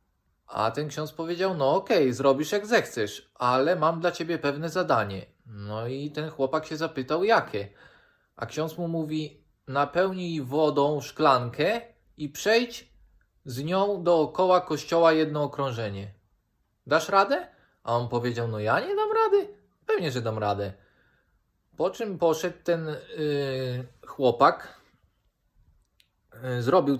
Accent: native